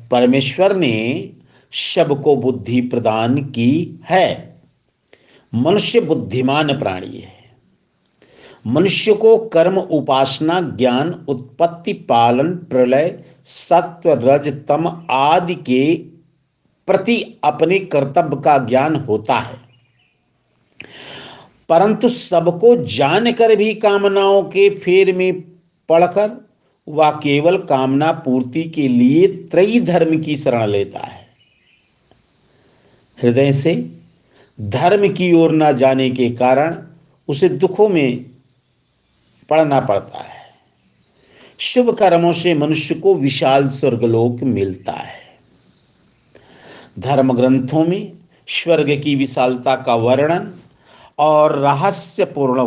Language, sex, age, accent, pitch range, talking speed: Hindi, male, 50-69, native, 130-180 Hz, 100 wpm